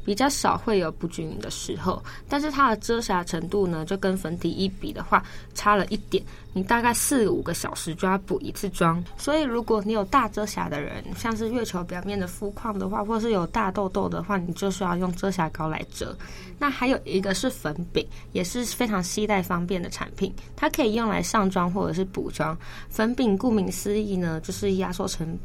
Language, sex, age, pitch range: Chinese, female, 20-39, 175-215 Hz